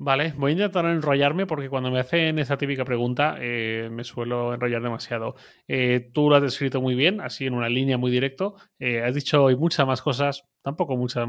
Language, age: Spanish, 30-49